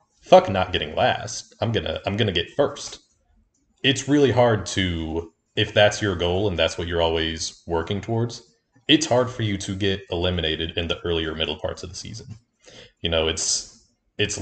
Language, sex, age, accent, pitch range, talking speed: English, male, 30-49, American, 85-110 Hz, 185 wpm